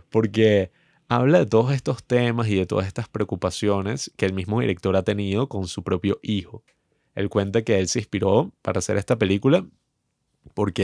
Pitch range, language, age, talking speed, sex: 100-125 Hz, Spanish, 30-49, 175 wpm, male